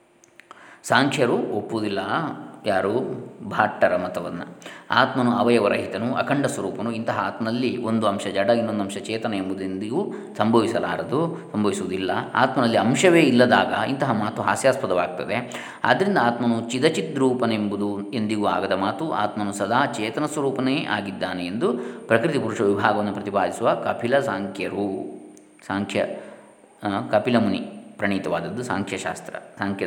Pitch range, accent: 100-130 Hz, native